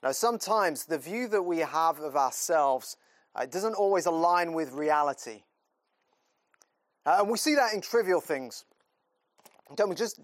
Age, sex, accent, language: 30-49, male, British, English